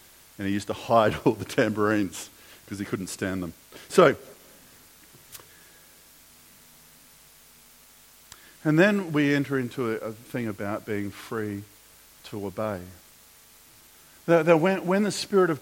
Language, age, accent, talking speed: English, 50-69, Australian, 125 wpm